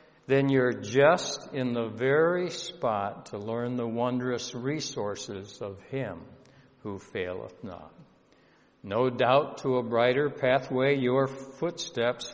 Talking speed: 120 wpm